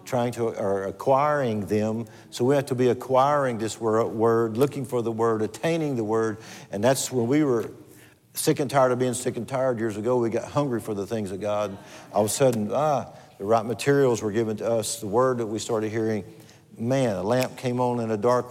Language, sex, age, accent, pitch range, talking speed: English, male, 50-69, American, 115-150 Hz, 225 wpm